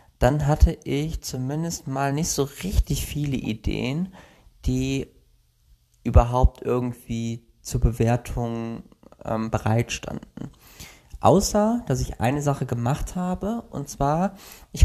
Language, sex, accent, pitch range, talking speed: German, male, German, 115-150 Hz, 110 wpm